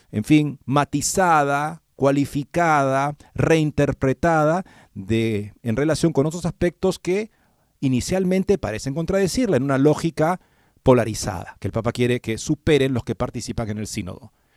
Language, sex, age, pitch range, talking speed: Spanish, male, 40-59, 115-155 Hz, 125 wpm